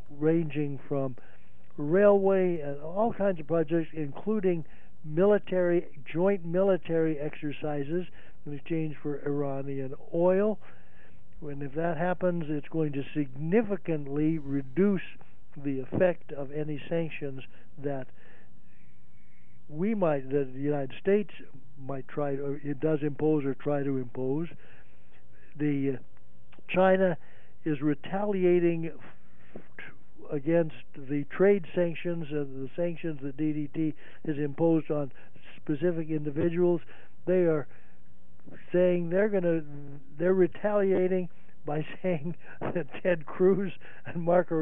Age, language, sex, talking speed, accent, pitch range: 60-79, English, male, 110 wpm, American, 145-180 Hz